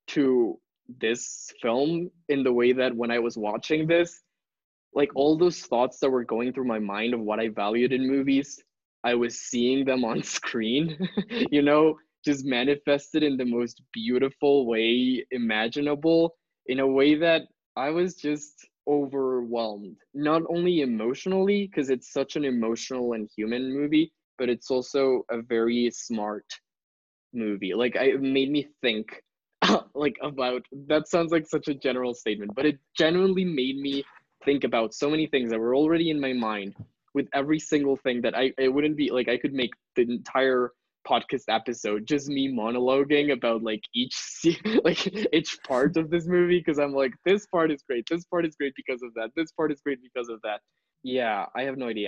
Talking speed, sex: 180 wpm, male